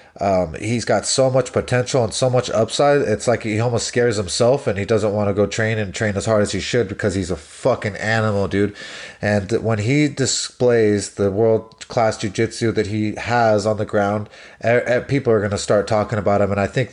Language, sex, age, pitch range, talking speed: English, male, 30-49, 105-120 Hz, 225 wpm